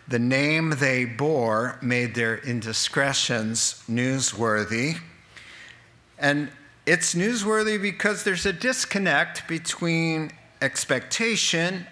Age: 50-69